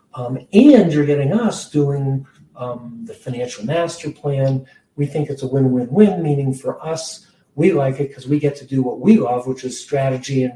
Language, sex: English, male